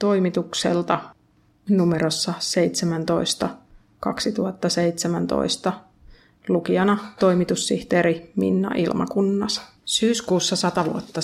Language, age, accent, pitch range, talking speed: Finnish, 30-49, native, 170-185 Hz, 55 wpm